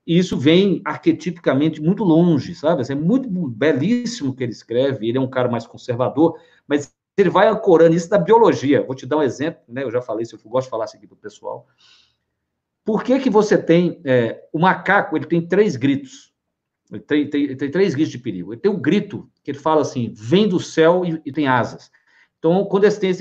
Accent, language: Brazilian, Portuguese